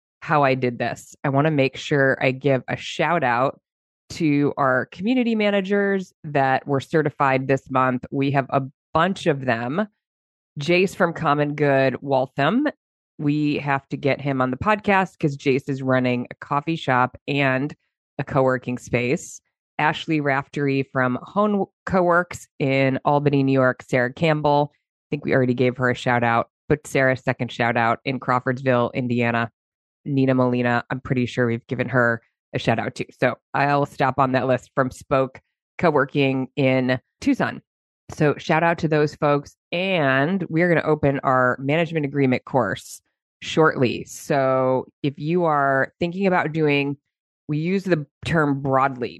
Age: 20-39